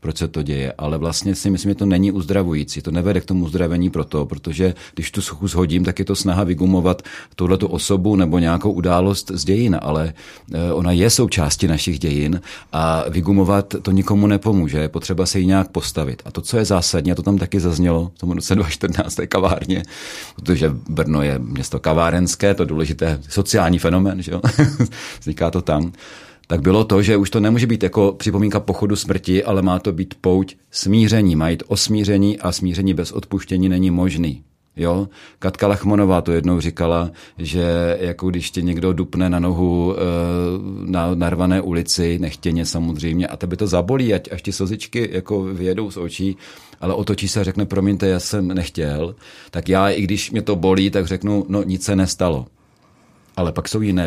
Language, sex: Czech, male